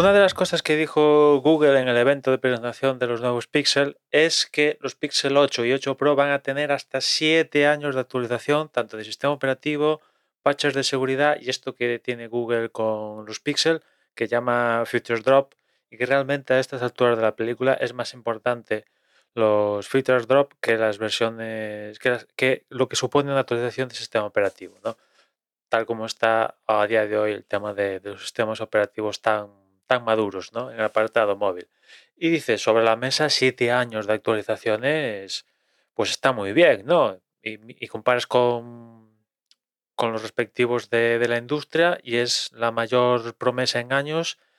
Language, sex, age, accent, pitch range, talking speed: Spanish, male, 20-39, Spanish, 110-135 Hz, 180 wpm